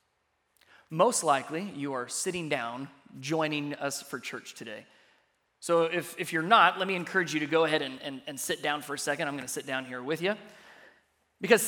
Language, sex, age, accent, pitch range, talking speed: English, male, 30-49, American, 145-190 Hz, 200 wpm